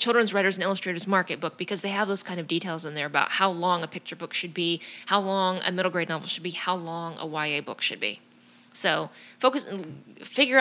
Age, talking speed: 20-39, 240 wpm